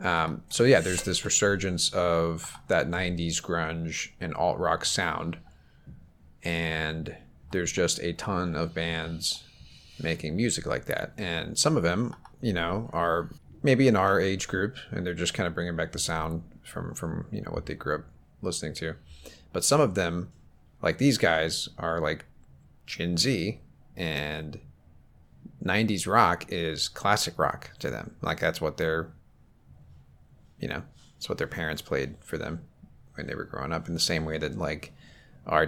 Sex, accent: male, American